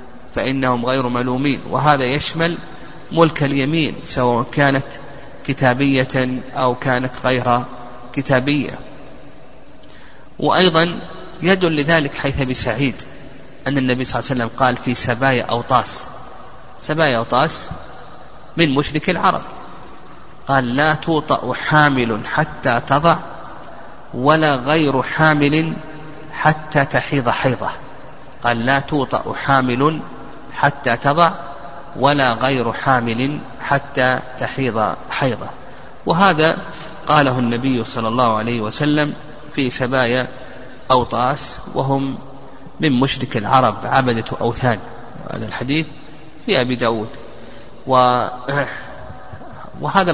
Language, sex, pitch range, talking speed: Arabic, male, 125-150 Hz, 95 wpm